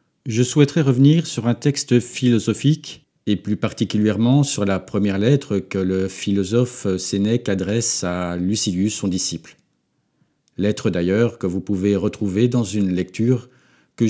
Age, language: 50-69, French